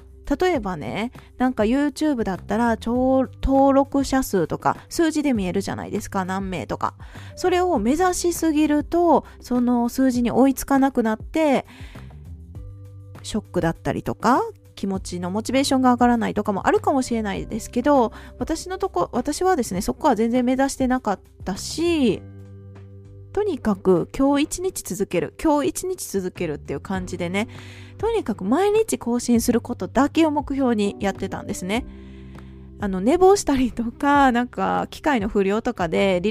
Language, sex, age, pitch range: Japanese, female, 20-39, 195-290 Hz